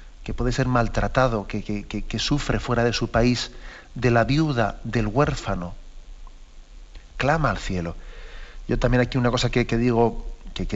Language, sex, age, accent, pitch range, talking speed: Spanish, male, 40-59, Spanish, 115-140 Hz, 165 wpm